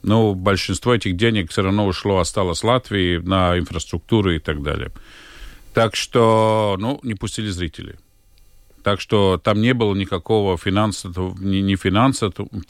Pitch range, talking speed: 95-115 Hz, 145 wpm